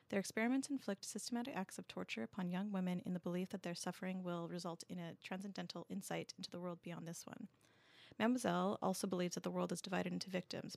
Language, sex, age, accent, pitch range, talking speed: English, female, 30-49, American, 175-205 Hz, 210 wpm